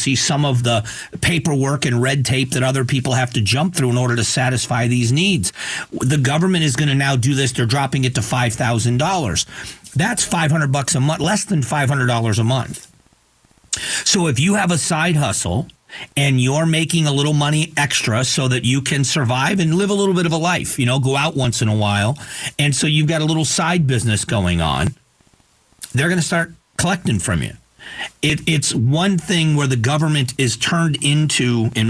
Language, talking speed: English, 200 wpm